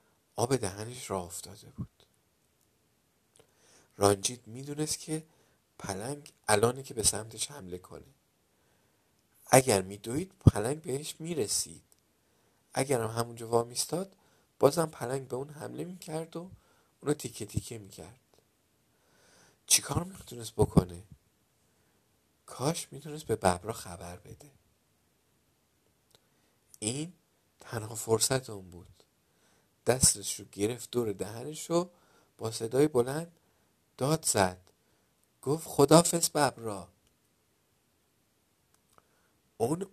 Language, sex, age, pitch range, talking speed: Persian, male, 50-69, 105-145 Hz, 95 wpm